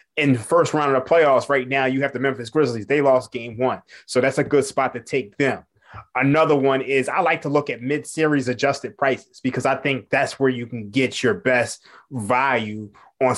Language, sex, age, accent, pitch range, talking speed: English, male, 20-39, American, 130-150 Hz, 220 wpm